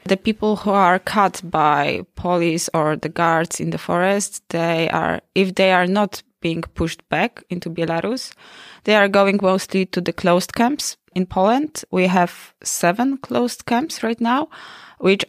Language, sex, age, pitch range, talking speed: English, female, 20-39, 170-195 Hz, 165 wpm